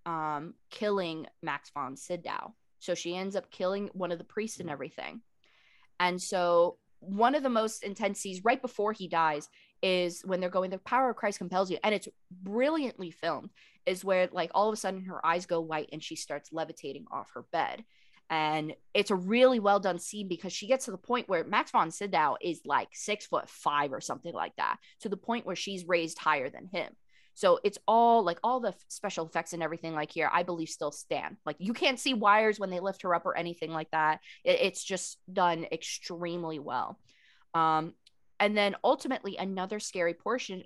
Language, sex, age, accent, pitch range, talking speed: English, female, 20-39, American, 170-210 Hz, 205 wpm